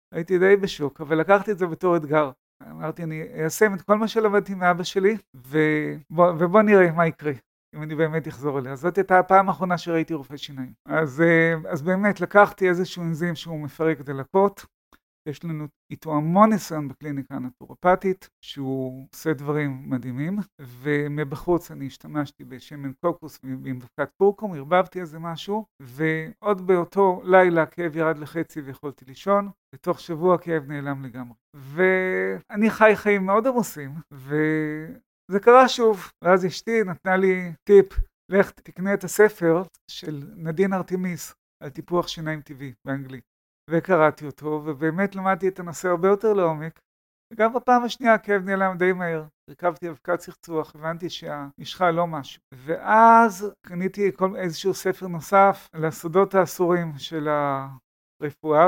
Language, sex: Hebrew, male